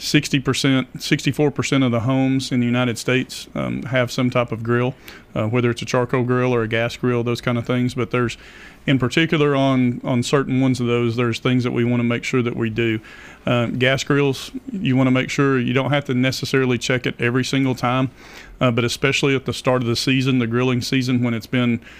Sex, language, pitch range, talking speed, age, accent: male, English, 120-130 Hz, 230 wpm, 40-59, American